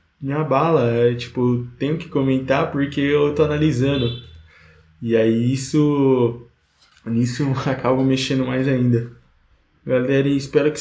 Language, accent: Portuguese, Brazilian